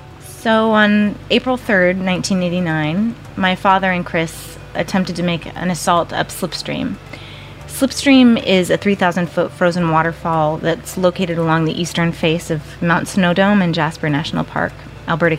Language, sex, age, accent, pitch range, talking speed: English, female, 30-49, American, 160-185 Hz, 145 wpm